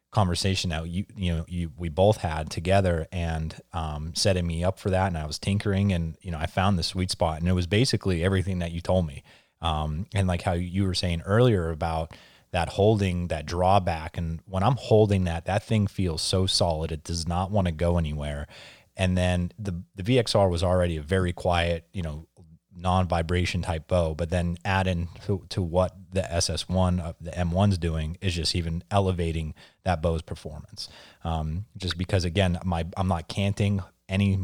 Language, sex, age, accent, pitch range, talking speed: English, male, 30-49, American, 85-95 Hz, 200 wpm